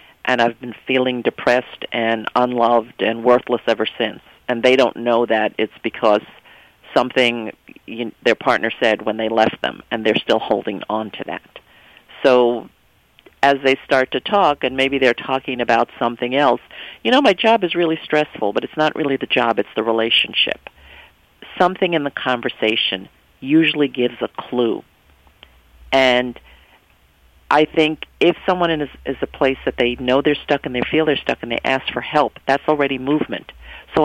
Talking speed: 175 wpm